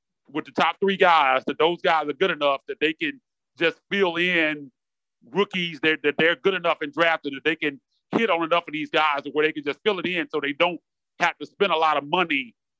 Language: English